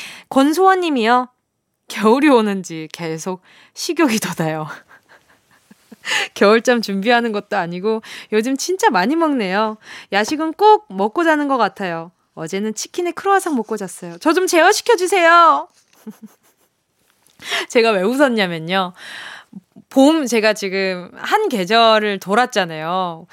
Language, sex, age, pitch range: Korean, female, 20-39, 205-320 Hz